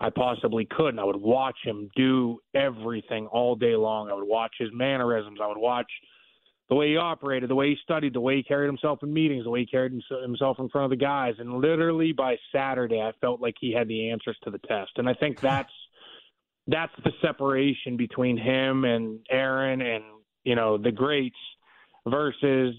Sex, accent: male, American